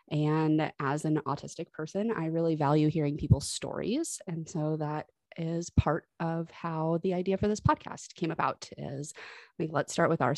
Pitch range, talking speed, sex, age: 150-195 Hz, 180 wpm, female, 20-39